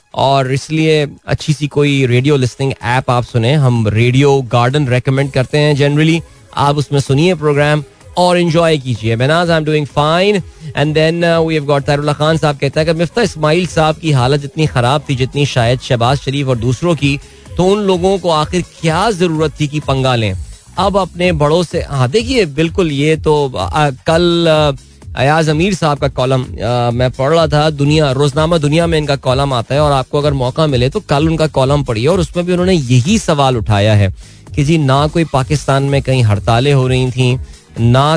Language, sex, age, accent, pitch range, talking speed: Hindi, male, 20-39, native, 125-160 Hz, 190 wpm